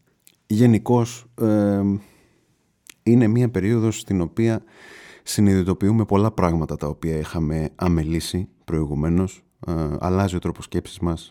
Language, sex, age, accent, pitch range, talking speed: Greek, male, 30-49, native, 85-105 Hz, 110 wpm